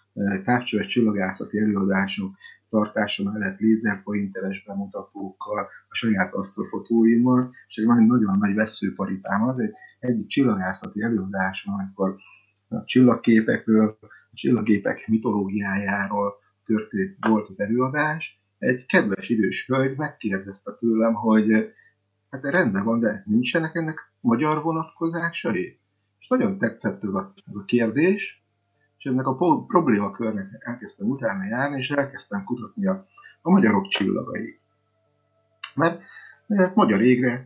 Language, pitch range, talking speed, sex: Hungarian, 105-145 Hz, 110 wpm, male